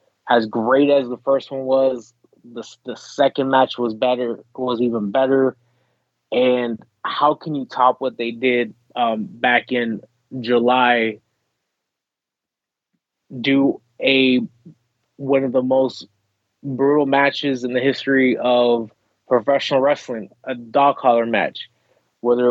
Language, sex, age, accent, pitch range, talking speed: English, male, 20-39, American, 115-130 Hz, 125 wpm